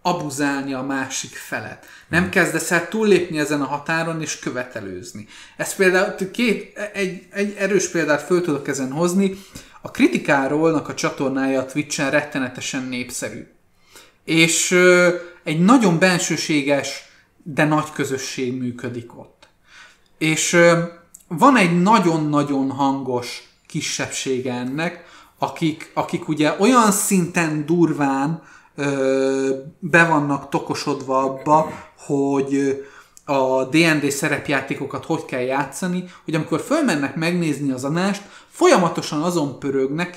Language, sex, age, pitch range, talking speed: Hungarian, male, 30-49, 135-175 Hz, 110 wpm